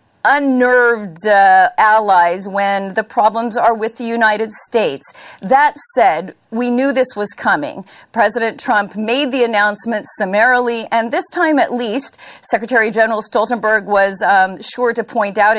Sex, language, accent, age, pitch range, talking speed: female, English, American, 40-59, 205-250 Hz, 145 wpm